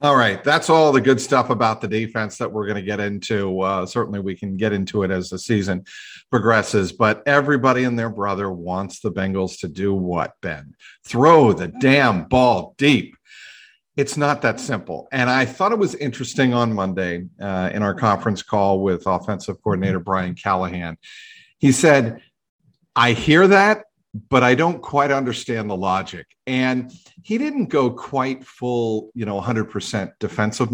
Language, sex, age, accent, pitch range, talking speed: English, male, 50-69, American, 100-135 Hz, 170 wpm